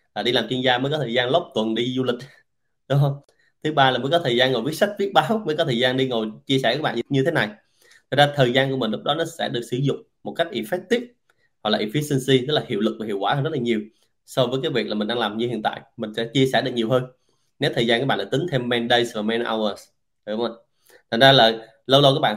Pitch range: 120-145 Hz